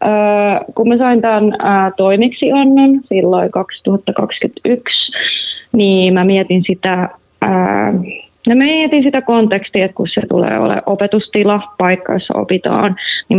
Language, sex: Finnish, female